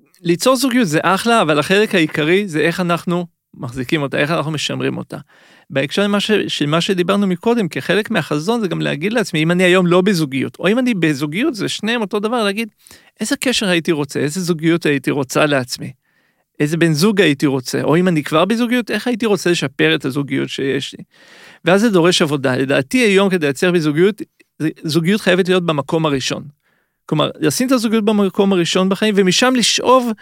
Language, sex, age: Hebrew, male, 40-59